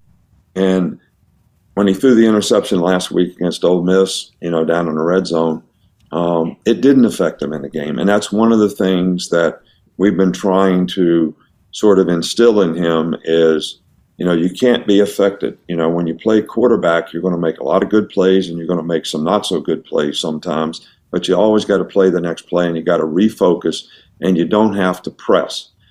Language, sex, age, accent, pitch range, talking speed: English, male, 50-69, American, 85-100 Hz, 215 wpm